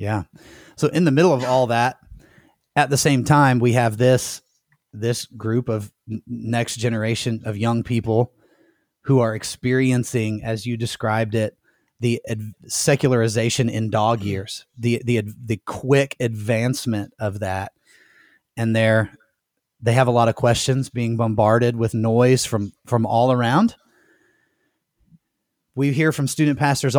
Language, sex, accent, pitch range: English, male, American, 110-130 Hz